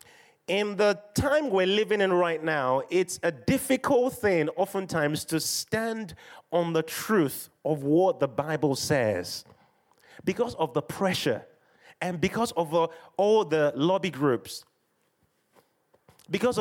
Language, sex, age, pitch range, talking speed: English, male, 30-49, 145-190 Hz, 125 wpm